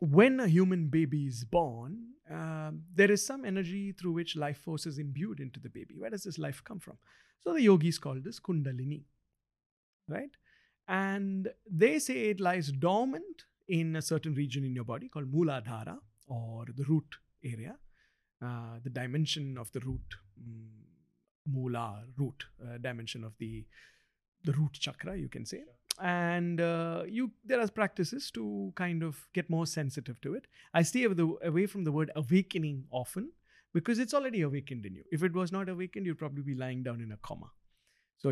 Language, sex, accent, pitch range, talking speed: English, male, Indian, 135-185 Hz, 180 wpm